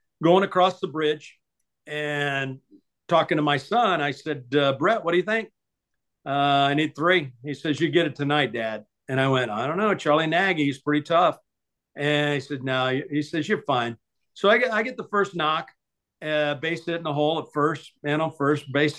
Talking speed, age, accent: 210 wpm, 50-69, American